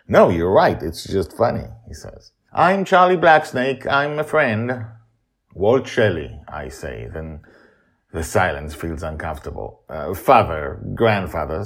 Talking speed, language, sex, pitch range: 135 wpm, English, male, 85-115 Hz